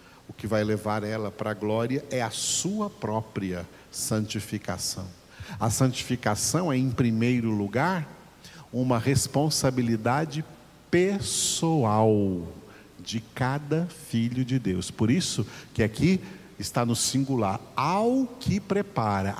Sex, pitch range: male, 110-160 Hz